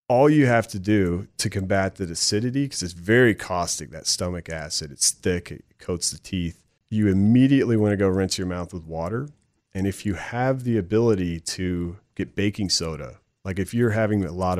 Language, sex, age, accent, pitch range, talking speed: English, male, 30-49, American, 85-105 Hz, 195 wpm